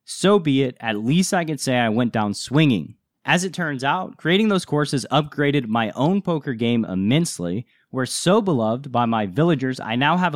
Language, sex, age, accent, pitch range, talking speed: English, male, 30-49, American, 120-175 Hz, 195 wpm